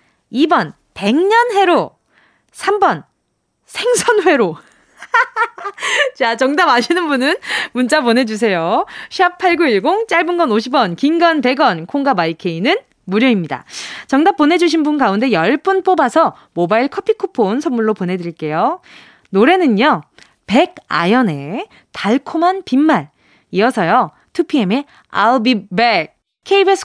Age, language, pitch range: 20-39, Korean, 210-345 Hz